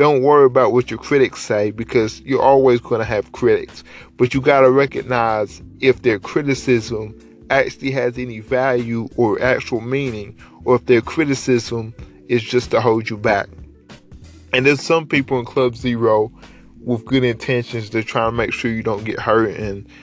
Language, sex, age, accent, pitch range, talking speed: English, male, 20-39, American, 115-140 Hz, 175 wpm